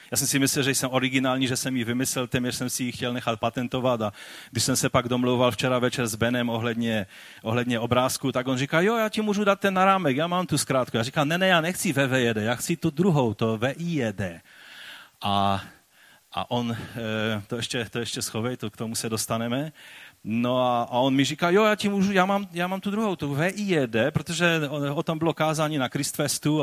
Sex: male